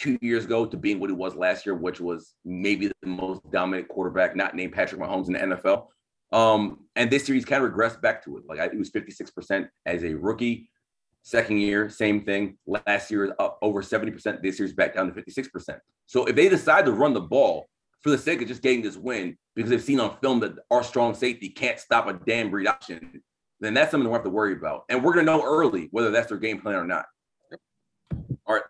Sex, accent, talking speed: male, American, 235 wpm